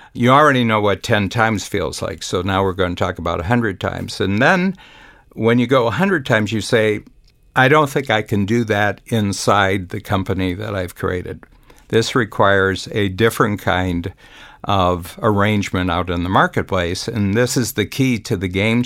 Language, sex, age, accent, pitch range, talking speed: English, male, 60-79, American, 95-120 Hz, 180 wpm